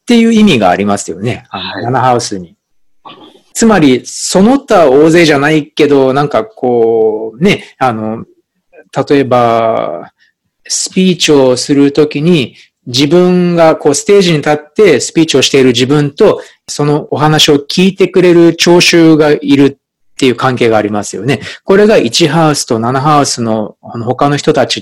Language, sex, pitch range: Japanese, male, 120-170 Hz